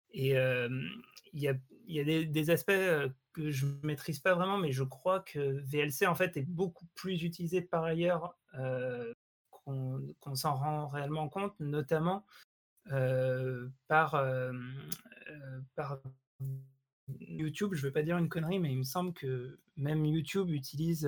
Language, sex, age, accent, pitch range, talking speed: French, male, 30-49, French, 135-170 Hz, 160 wpm